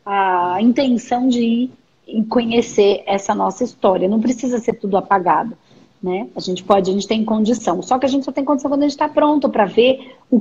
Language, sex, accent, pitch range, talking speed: Portuguese, female, Brazilian, 215-275 Hz, 210 wpm